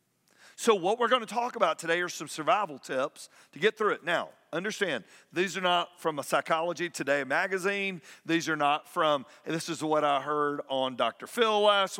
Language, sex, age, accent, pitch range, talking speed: English, male, 50-69, American, 165-220 Hz, 200 wpm